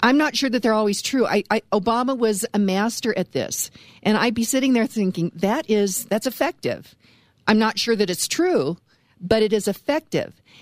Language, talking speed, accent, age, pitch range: English, 190 wpm, American, 50-69, 200-255 Hz